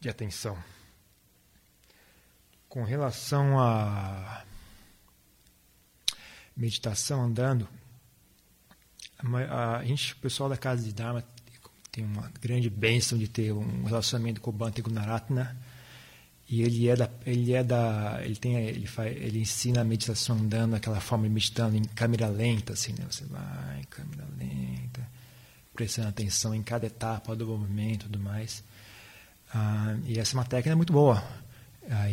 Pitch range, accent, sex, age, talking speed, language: 110-125 Hz, Brazilian, male, 40-59, 140 wpm, Portuguese